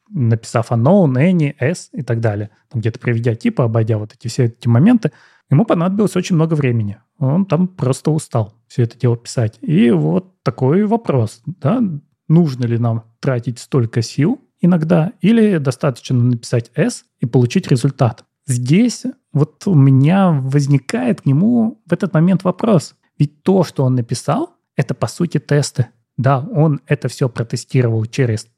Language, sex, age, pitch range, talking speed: Russian, male, 30-49, 120-160 Hz, 155 wpm